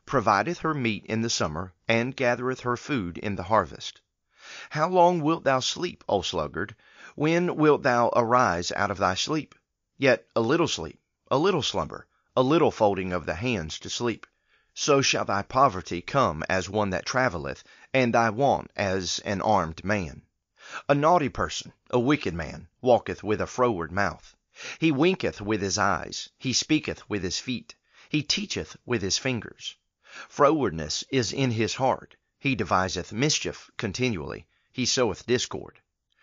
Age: 40-59